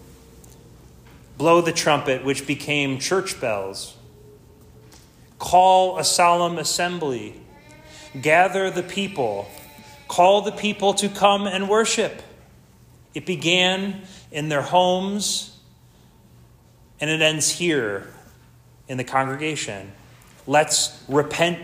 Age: 30-49